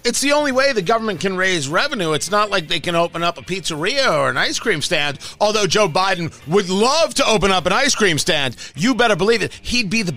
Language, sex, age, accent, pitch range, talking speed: English, male, 40-59, American, 170-225 Hz, 250 wpm